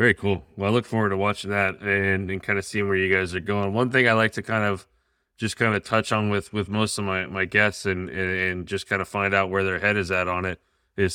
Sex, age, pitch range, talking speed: male, 20-39, 85-100 Hz, 290 wpm